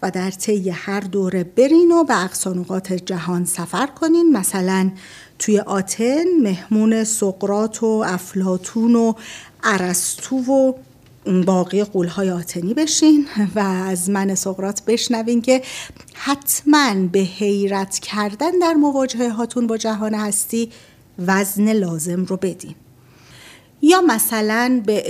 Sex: female